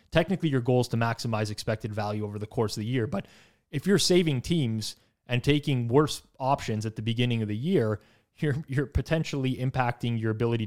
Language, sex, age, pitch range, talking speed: English, male, 30-49, 115-145 Hz, 195 wpm